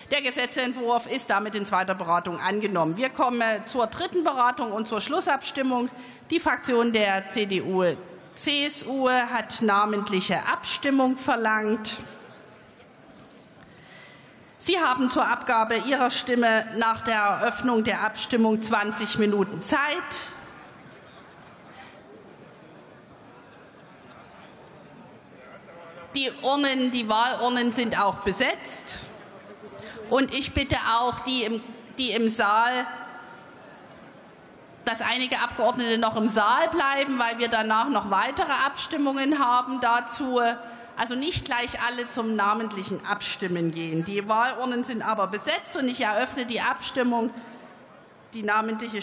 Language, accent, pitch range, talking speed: German, German, 210-255 Hz, 110 wpm